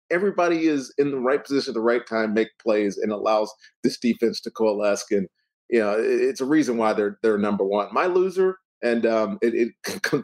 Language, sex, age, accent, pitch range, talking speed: English, male, 40-59, American, 110-145 Hz, 210 wpm